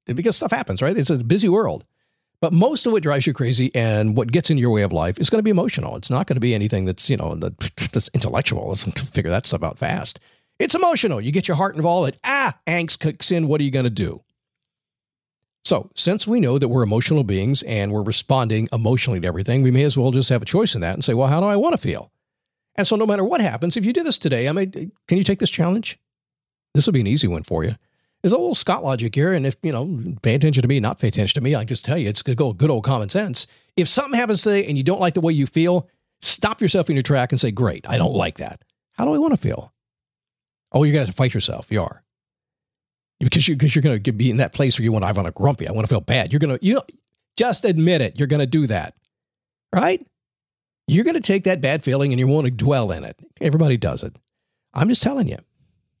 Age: 50-69